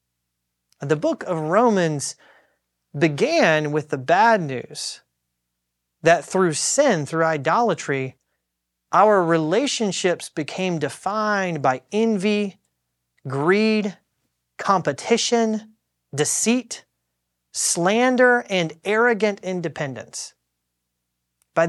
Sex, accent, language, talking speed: male, American, English, 75 wpm